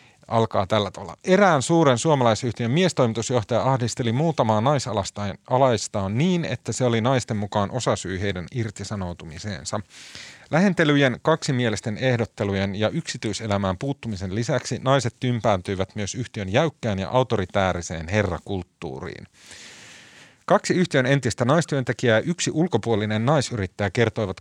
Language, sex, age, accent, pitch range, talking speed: Finnish, male, 30-49, native, 100-130 Hz, 105 wpm